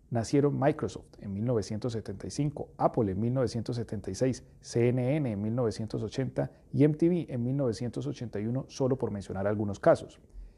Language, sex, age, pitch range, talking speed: English, male, 40-59, 100-135 Hz, 110 wpm